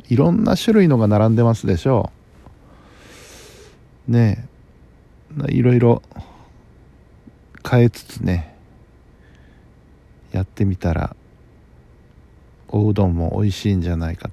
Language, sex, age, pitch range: Japanese, male, 50-69, 90-120 Hz